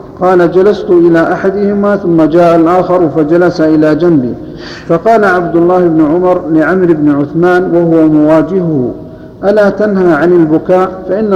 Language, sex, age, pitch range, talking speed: Arabic, male, 50-69, 160-185 Hz, 130 wpm